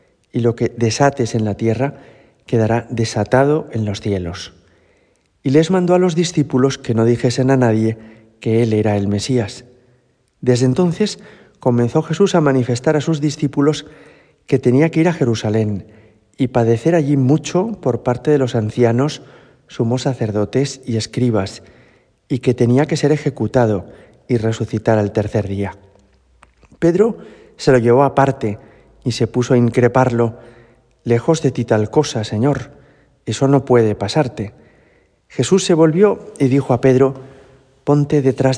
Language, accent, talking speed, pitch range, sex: Spanish, Spanish, 150 wpm, 110-145 Hz, male